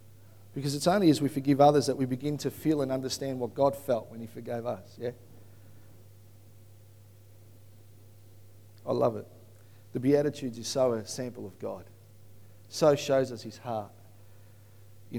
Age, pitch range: 40-59, 105-145 Hz